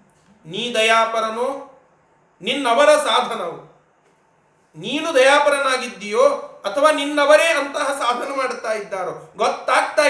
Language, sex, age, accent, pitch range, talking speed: Kannada, male, 40-59, native, 220-275 Hz, 75 wpm